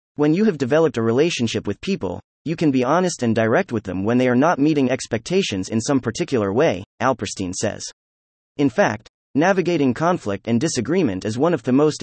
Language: English